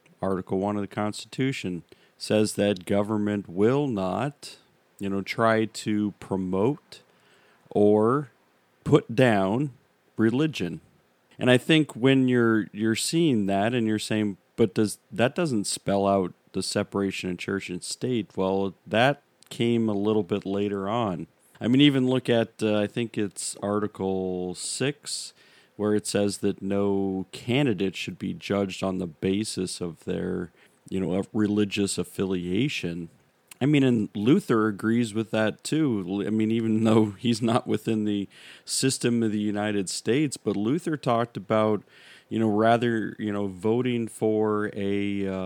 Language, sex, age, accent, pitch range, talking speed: English, male, 40-59, American, 100-115 Hz, 150 wpm